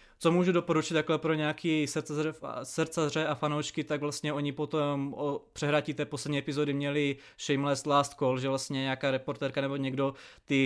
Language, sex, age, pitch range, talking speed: Czech, male, 20-39, 135-150 Hz, 175 wpm